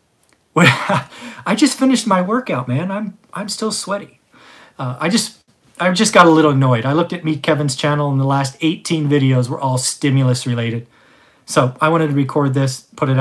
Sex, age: male, 30-49